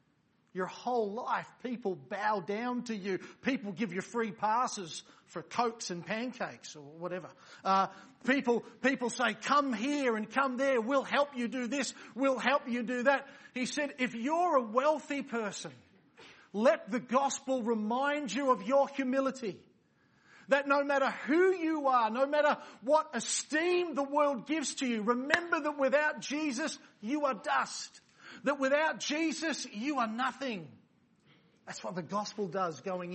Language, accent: English, Australian